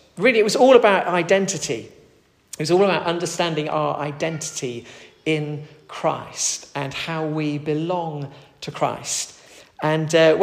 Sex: male